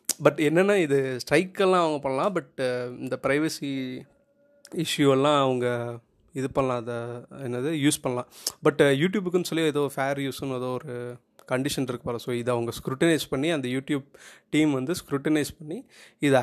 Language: Tamil